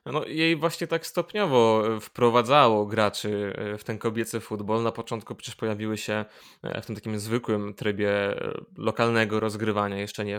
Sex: male